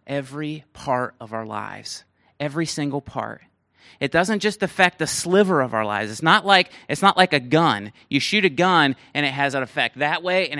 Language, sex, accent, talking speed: English, male, American, 210 wpm